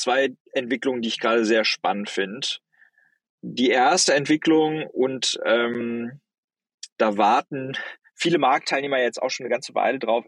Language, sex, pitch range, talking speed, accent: German, male, 110-135 Hz, 140 wpm, German